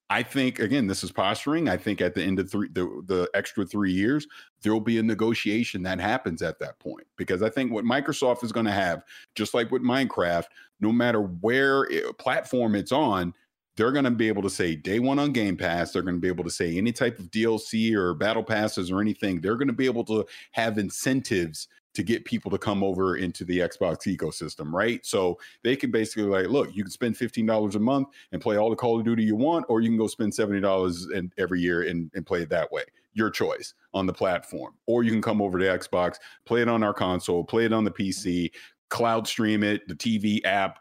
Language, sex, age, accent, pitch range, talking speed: English, male, 40-59, American, 95-115 Hz, 230 wpm